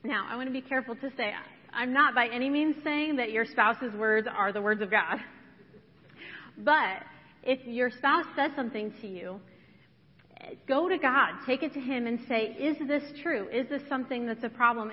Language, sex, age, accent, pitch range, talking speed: English, female, 30-49, American, 220-275 Hz, 195 wpm